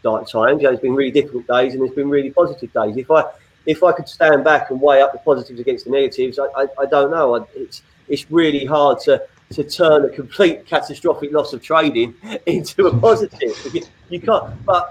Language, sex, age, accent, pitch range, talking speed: English, male, 30-49, British, 140-180 Hz, 220 wpm